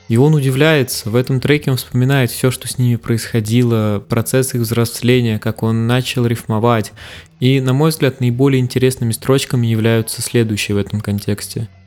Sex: male